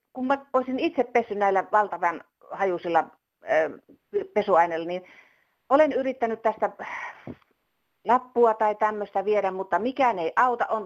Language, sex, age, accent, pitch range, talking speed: Finnish, female, 30-49, native, 220-315 Hz, 110 wpm